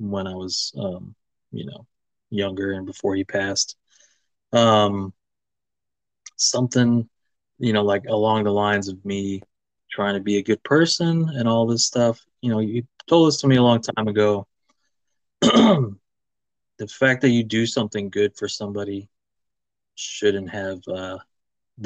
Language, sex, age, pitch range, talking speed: English, male, 20-39, 95-115 Hz, 150 wpm